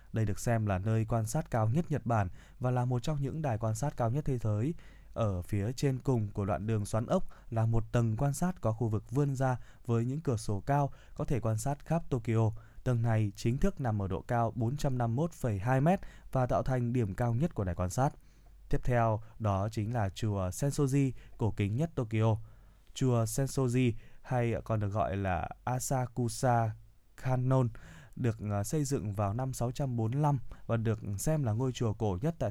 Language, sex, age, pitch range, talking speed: Vietnamese, male, 20-39, 110-135 Hz, 200 wpm